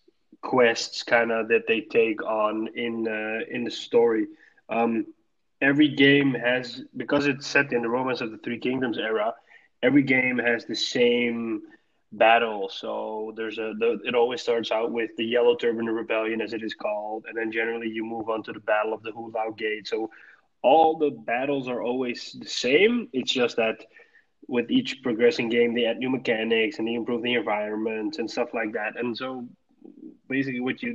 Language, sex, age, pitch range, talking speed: English, male, 20-39, 115-140 Hz, 185 wpm